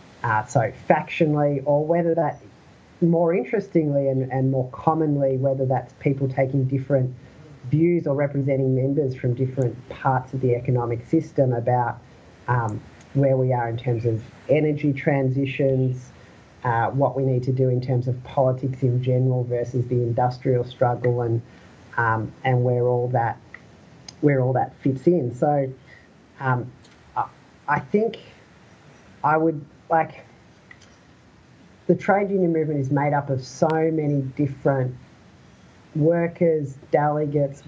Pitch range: 125-145 Hz